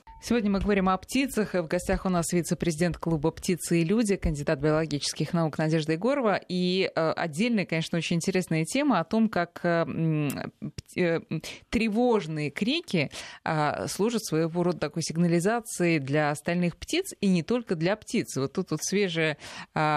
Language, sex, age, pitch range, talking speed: Russian, female, 20-39, 160-200 Hz, 140 wpm